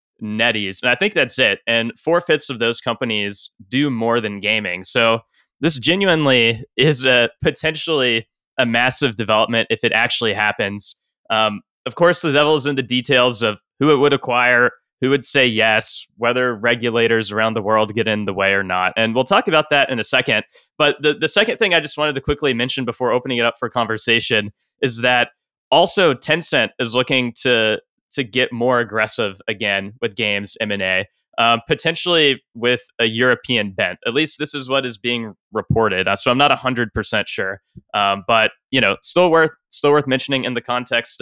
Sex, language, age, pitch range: male, English, 20-39, 110-135 Hz